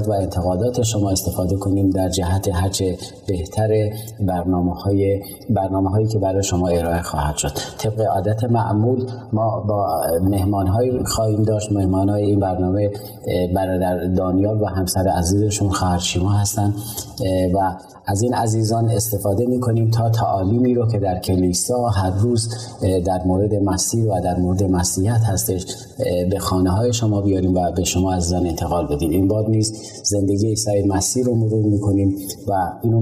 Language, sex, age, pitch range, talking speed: Persian, male, 30-49, 95-110 Hz, 150 wpm